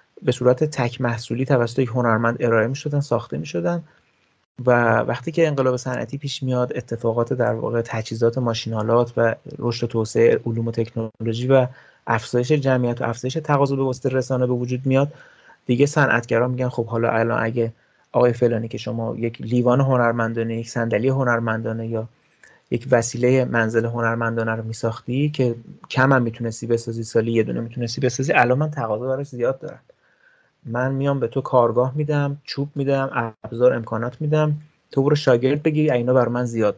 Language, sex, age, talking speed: Persian, male, 30-49, 165 wpm